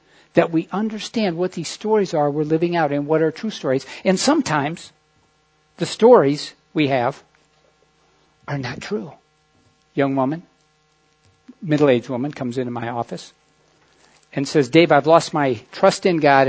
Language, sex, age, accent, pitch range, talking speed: English, male, 60-79, American, 135-155 Hz, 150 wpm